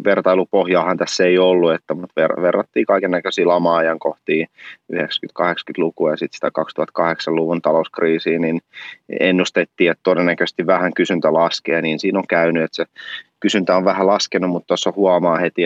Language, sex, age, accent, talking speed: Finnish, male, 30-49, native, 150 wpm